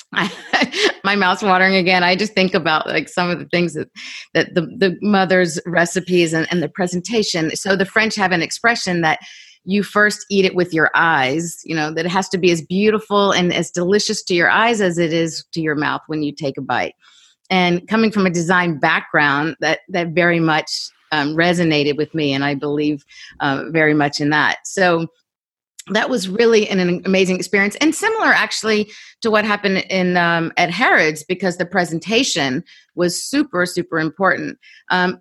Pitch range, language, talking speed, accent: 160-200 Hz, English, 190 wpm, American